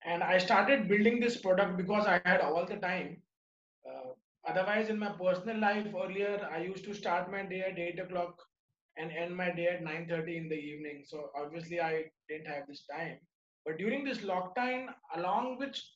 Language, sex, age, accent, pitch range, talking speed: English, male, 20-39, Indian, 175-205 Hz, 190 wpm